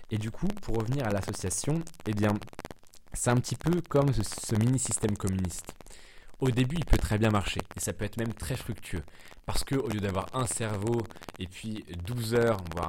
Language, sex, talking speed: French, male, 210 wpm